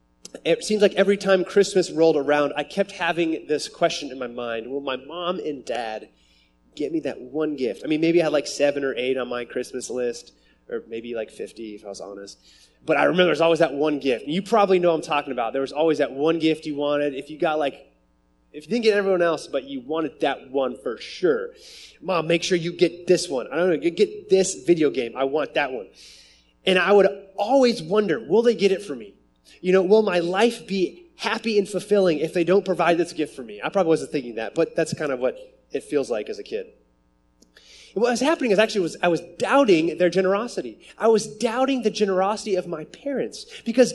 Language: English